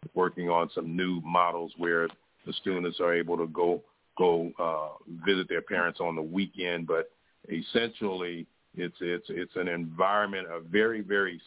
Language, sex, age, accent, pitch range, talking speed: English, male, 50-69, American, 85-95 Hz, 155 wpm